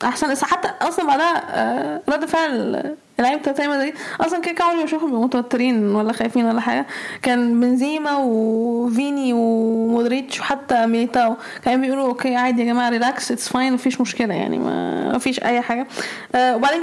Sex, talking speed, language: female, 145 wpm, Arabic